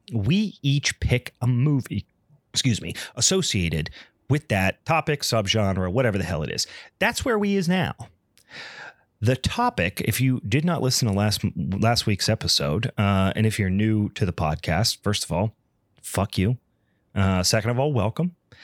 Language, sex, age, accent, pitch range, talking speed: English, male, 30-49, American, 100-130 Hz, 165 wpm